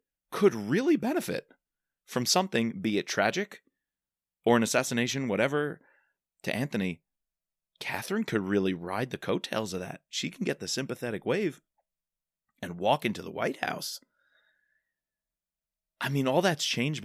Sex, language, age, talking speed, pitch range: male, English, 30-49, 135 wpm, 95-160 Hz